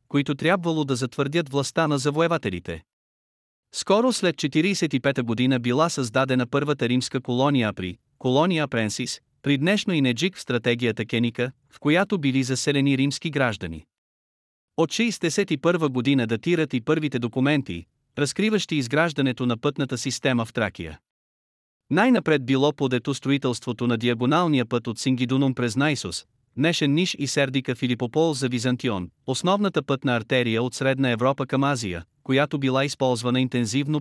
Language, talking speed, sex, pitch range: Bulgarian, 135 wpm, male, 120-150 Hz